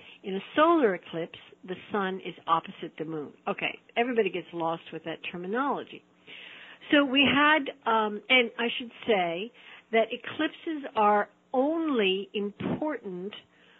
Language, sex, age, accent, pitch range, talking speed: English, female, 60-79, American, 180-230 Hz, 130 wpm